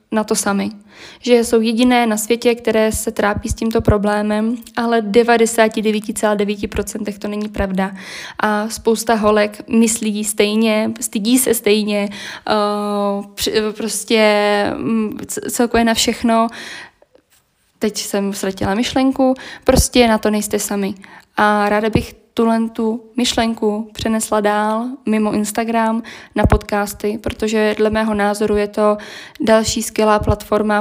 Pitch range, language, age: 210-230 Hz, Czech, 20-39